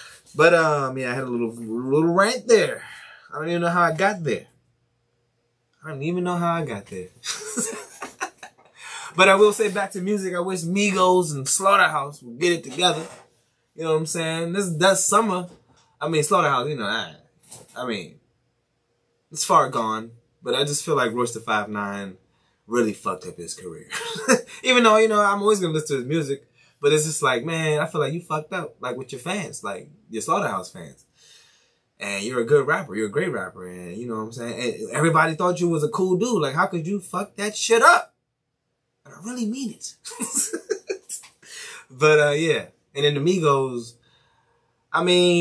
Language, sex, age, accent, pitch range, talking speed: English, male, 20-39, American, 120-180 Hz, 195 wpm